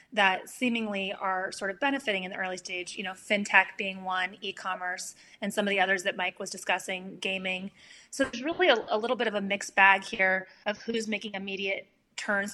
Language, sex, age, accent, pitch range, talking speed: English, female, 30-49, American, 190-215 Hz, 205 wpm